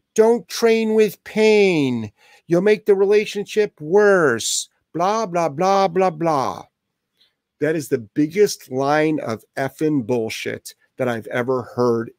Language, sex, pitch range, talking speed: English, male, 130-175 Hz, 130 wpm